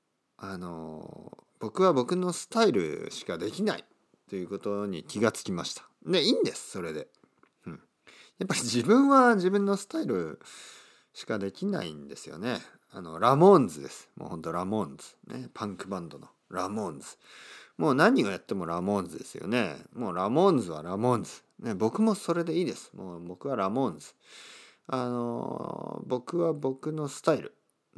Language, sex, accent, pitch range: Japanese, male, native, 95-160 Hz